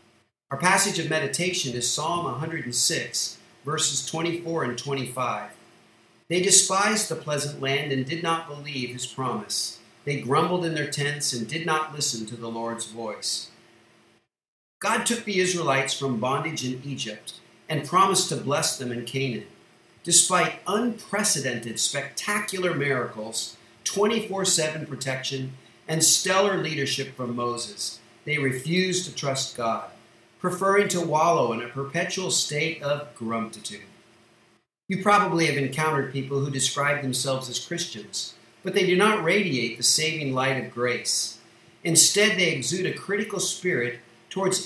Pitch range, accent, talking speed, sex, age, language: 130-180 Hz, American, 135 wpm, male, 50-69, English